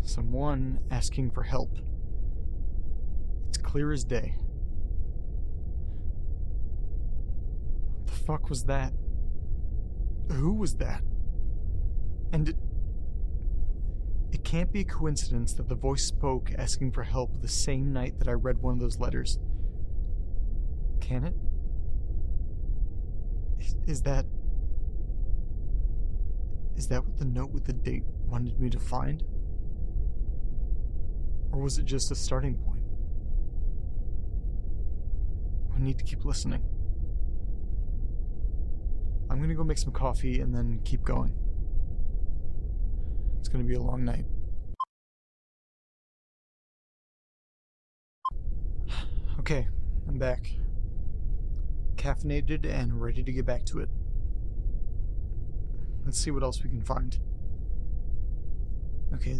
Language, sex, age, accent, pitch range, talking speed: English, male, 30-49, American, 80-105 Hz, 105 wpm